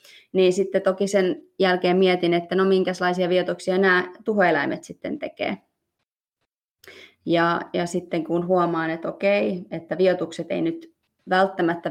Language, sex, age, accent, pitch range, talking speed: Finnish, female, 20-39, native, 170-195 Hz, 130 wpm